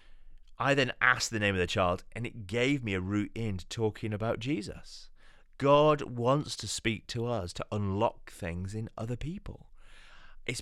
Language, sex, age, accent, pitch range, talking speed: English, male, 30-49, British, 100-140 Hz, 180 wpm